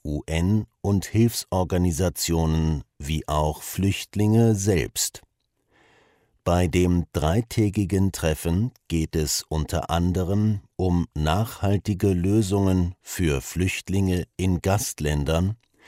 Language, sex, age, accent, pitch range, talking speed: English, male, 50-69, German, 80-100 Hz, 85 wpm